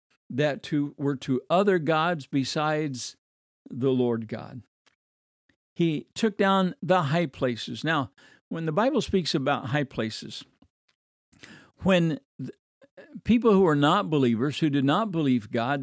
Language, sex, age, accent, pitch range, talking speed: English, male, 60-79, American, 130-195 Hz, 135 wpm